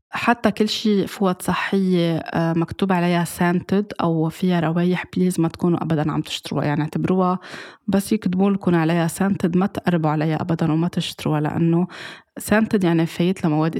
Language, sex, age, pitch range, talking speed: Arabic, female, 20-39, 160-180 Hz, 150 wpm